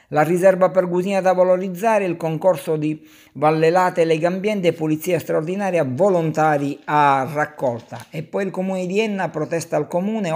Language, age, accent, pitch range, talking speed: Italian, 50-69, native, 135-175 Hz, 145 wpm